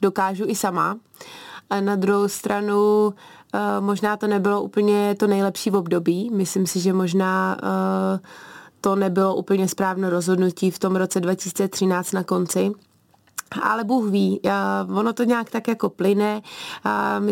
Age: 20-39